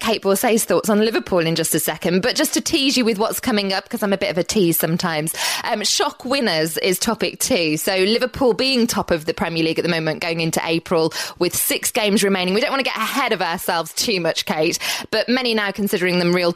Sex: female